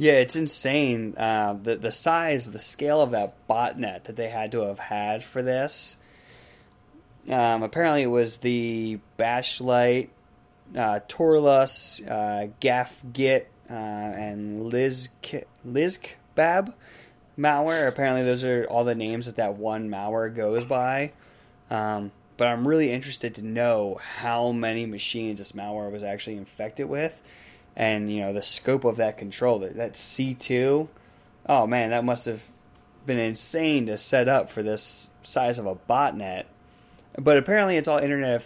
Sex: male